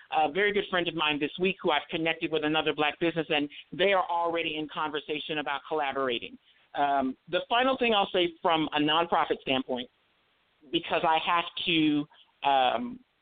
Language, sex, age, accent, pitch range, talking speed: English, male, 50-69, American, 150-185 Hz, 175 wpm